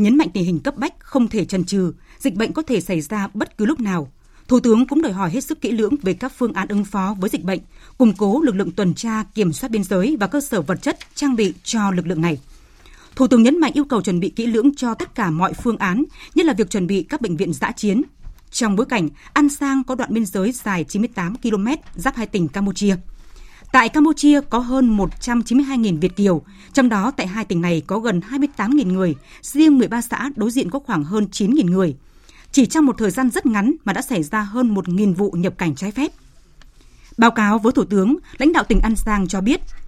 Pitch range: 195-260 Hz